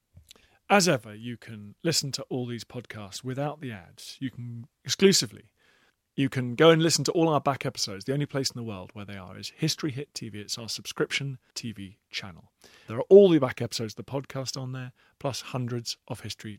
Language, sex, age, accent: English, male, 40-59, British